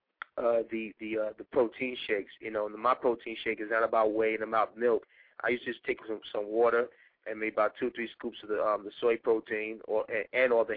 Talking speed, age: 250 wpm, 20-39